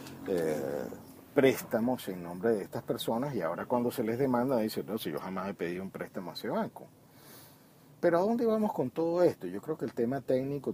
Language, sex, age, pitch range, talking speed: Spanish, male, 50-69, 100-140 Hz, 220 wpm